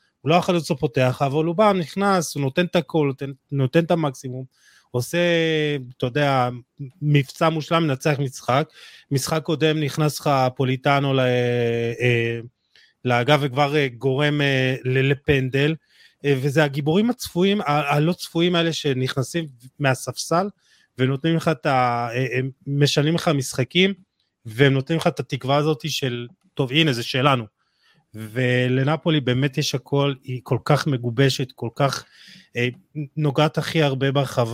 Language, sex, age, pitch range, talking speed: Hebrew, male, 30-49, 125-155 Hz, 130 wpm